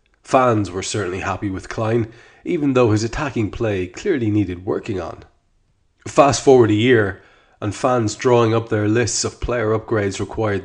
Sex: male